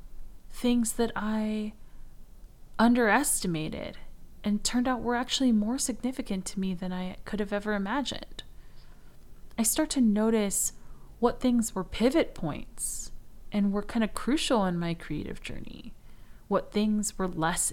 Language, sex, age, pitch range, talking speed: English, female, 20-39, 170-220 Hz, 140 wpm